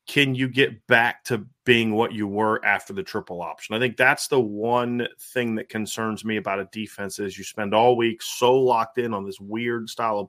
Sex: male